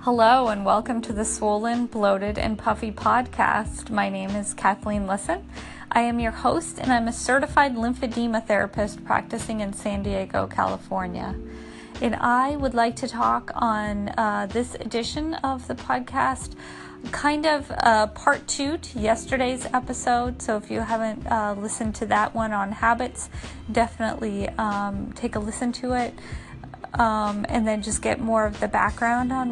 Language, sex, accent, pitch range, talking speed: English, female, American, 210-240 Hz, 160 wpm